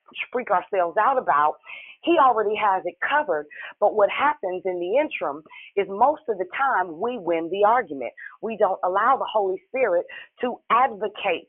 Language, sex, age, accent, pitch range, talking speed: English, female, 40-59, American, 175-220 Hz, 165 wpm